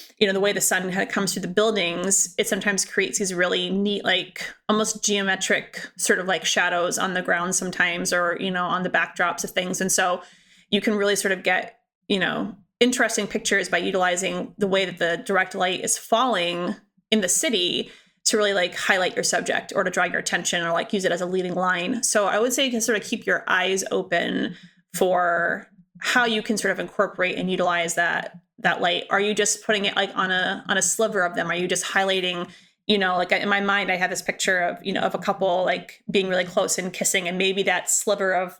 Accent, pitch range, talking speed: American, 180-205 Hz, 235 wpm